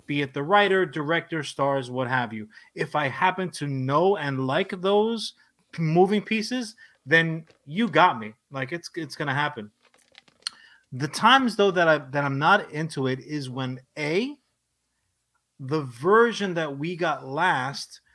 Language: English